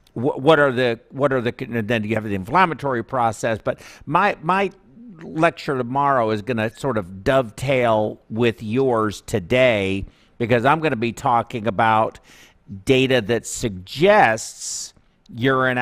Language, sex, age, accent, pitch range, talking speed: English, male, 50-69, American, 115-155 Hz, 140 wpm